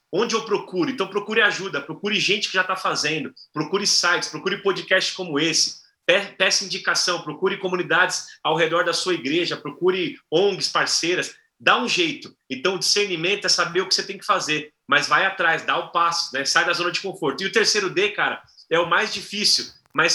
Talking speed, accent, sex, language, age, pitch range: 200 wpm, Brazilian, male, Portuguese, 30-49, 165-200 Hz